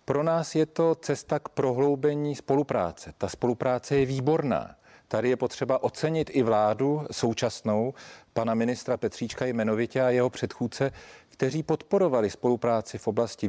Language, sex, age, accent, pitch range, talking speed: Czech, male, 40-59, native, 115-145 Hz, 140 wpm